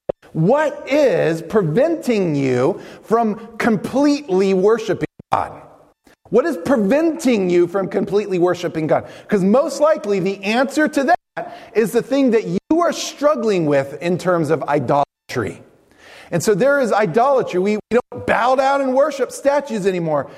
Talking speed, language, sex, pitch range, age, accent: 145 wpm, English, male, 175-255 Hz, 40-59, American